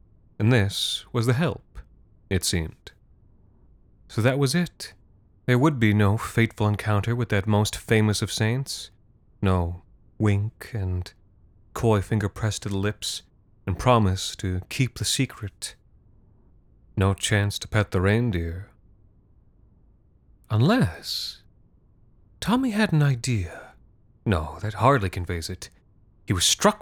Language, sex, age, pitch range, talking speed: English, male, 30-49, 95-115 Hz, 130 wpm